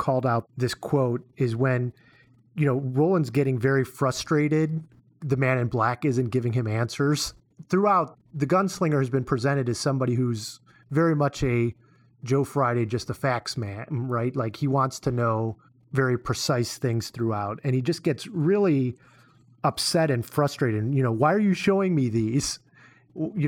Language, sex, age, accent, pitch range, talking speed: English, male, 30-49, American, 125-155 Hz, 165 wpm